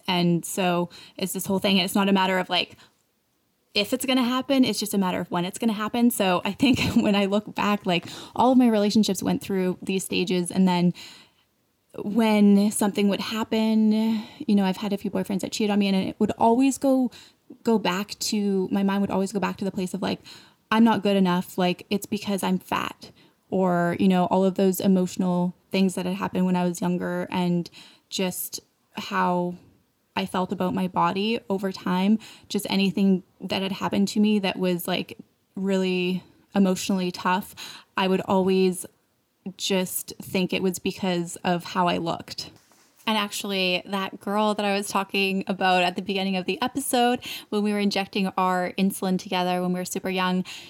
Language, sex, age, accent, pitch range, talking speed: English, female, 10-29, American, 185-210 Hz, 195 wpm